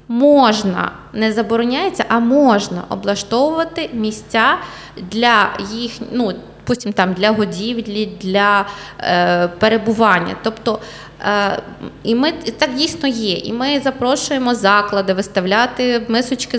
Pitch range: 200-260 Hz